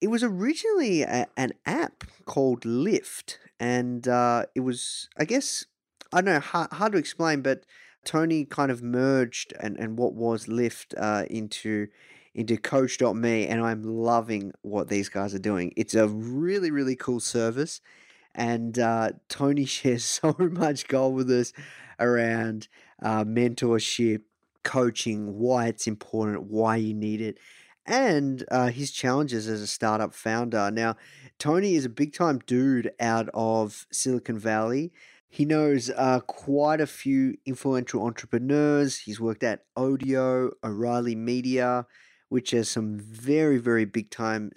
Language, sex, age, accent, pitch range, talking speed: English, male, 20-39, Australian, 110-135 Hz, 145 wpm